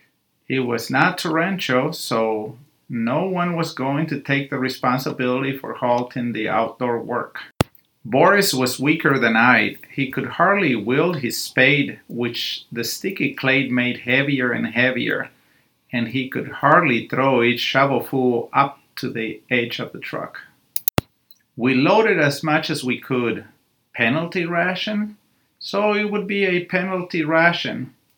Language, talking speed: English, 145 wpm